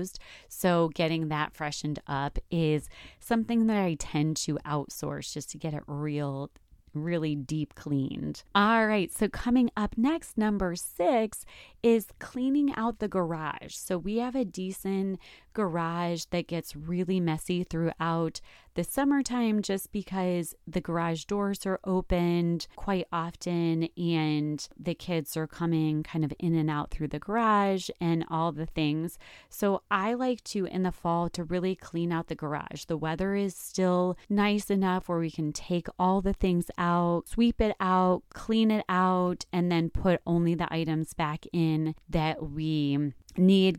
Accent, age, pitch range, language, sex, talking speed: American, 30-49, 155-190 Hz, English, female, 160 wpm